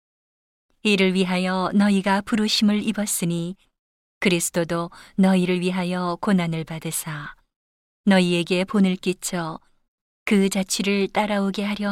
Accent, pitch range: native, 175-205 Hz